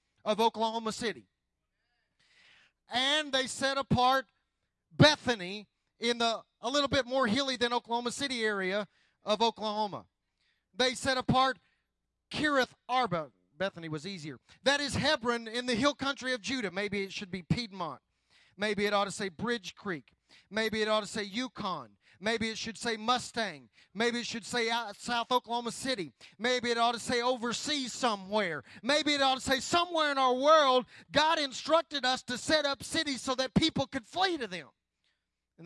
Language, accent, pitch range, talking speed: English, American, 185-240 Hz, 165 wpm